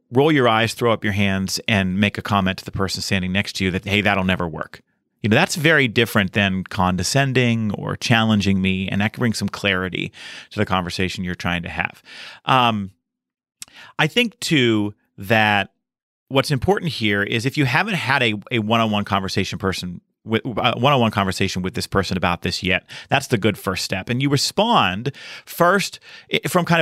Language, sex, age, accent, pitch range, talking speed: English, male, 40-59, American, 100-140 Hz, 190 wpm